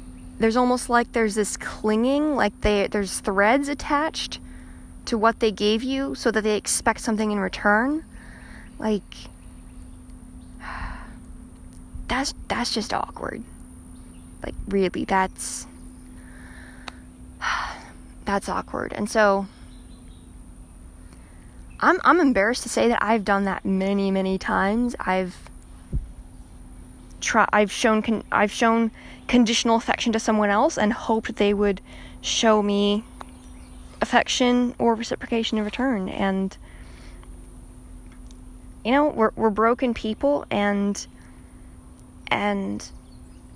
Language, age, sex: English, 20-39, female